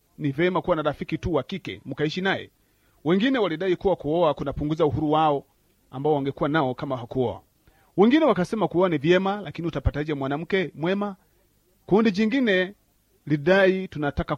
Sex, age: male, 40-59